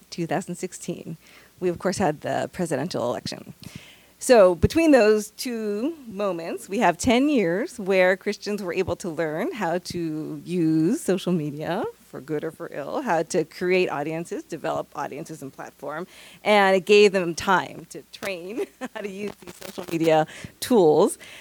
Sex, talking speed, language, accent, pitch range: female, 155 wpm, English, American, 165-210 Hz